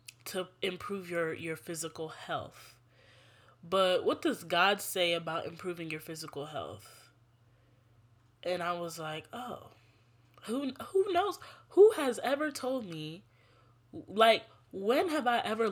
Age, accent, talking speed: 10-29, American, 130 wpm